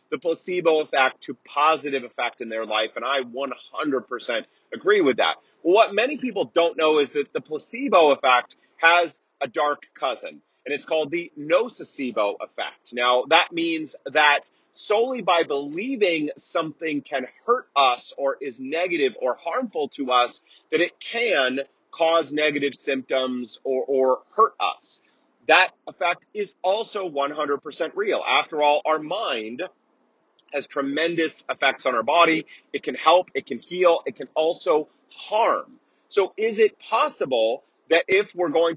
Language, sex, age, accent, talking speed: English, male, 30-49, American, 150 wpm